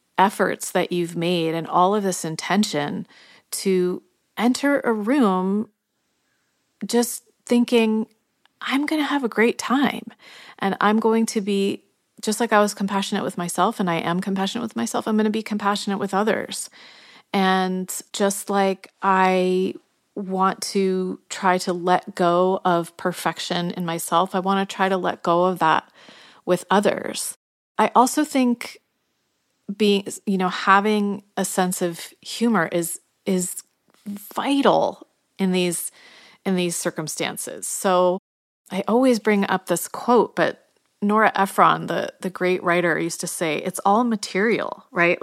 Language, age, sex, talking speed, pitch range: English, 30-49, female, 150 wpm, 180-220 Hz